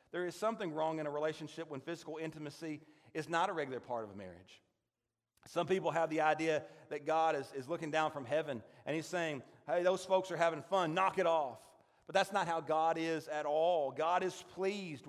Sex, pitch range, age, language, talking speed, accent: male, 150-185 Hz, 40-59, English, 215 wpm, American